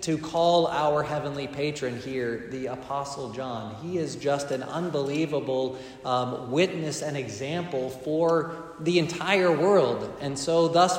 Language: English